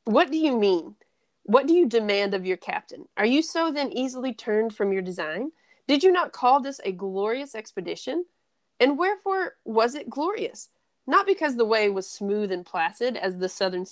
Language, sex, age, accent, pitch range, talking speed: English, female, 30-49, American, 200-275 Hz, 190 wpm